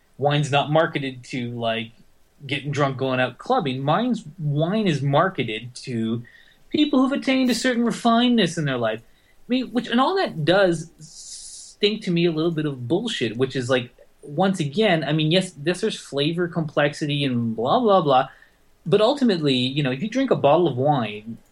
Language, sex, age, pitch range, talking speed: English, male, 20-39, 125-175 Hz, 185 wpm